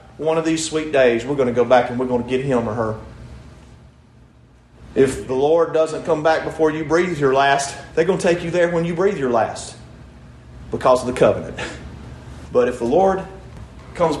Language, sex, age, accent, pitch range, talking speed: English, male, 40-59, American, 135-215 Hz, 205 wpm